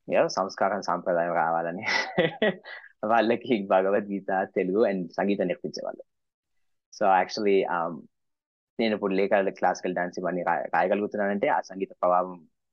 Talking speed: 130 wpm